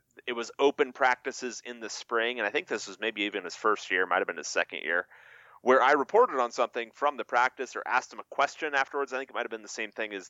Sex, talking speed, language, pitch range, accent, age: male, 260 wpm, English, 100-130 Hz, American, 30-49